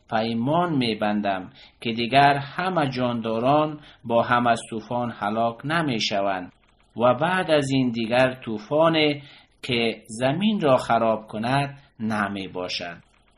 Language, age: Persian, 50-69